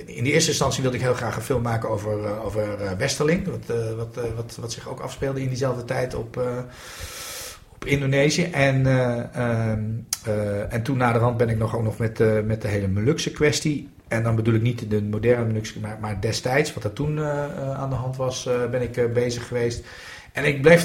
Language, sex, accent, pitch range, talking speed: Dutch, male, Dutch, 110-135 Hz, 215 wpm